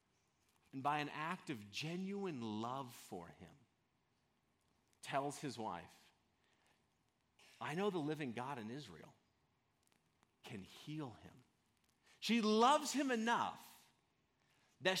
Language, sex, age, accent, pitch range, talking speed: English, male, 40-59, American, 145-210 Hz, 110 wpm